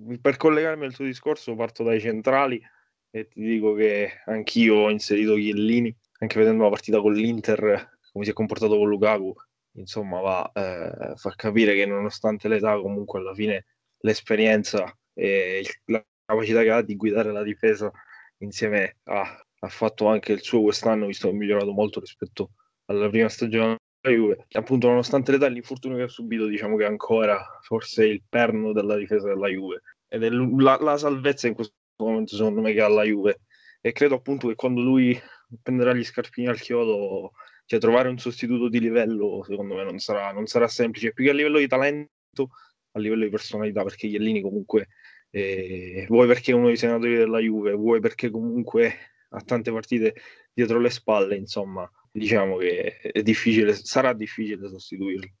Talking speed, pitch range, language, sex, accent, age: 180 wpm, 105-120 Hz, Italian, male, native, 20-39